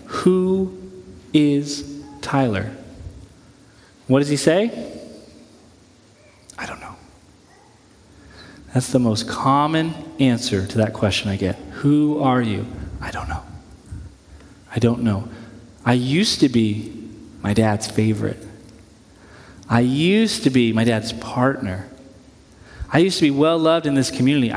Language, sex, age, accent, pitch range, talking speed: English, male, 30-49, American, 115-165 Hz, 125 wpm